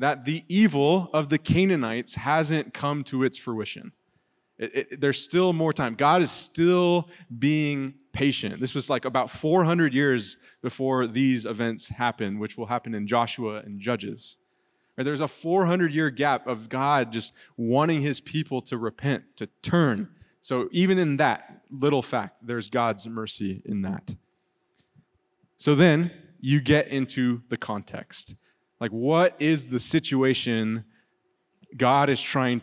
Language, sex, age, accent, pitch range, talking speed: English, male, 20-39, American, 120-160 Hz, 140 wpm